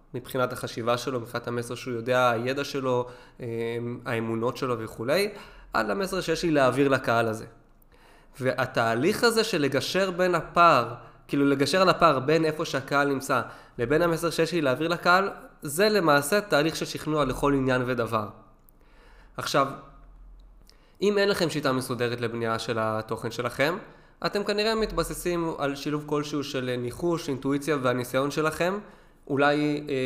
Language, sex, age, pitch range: Hebrew, male, 20-39, 125-160 Hz